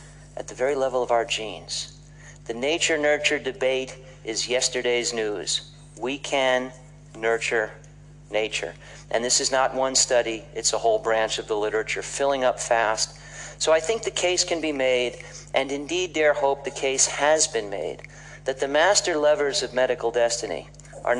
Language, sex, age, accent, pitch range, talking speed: English, male, 50-69, American, 120-150 Hz, 165 wpm